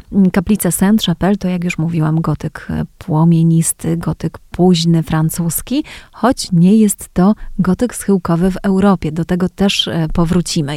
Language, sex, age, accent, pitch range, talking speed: Polish, female, 30-49, native, 170-215 Hz, 130 wpm